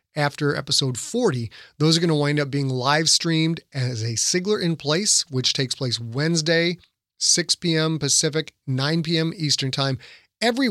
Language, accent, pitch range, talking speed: English, American, 125-155 Hz, 160 wpm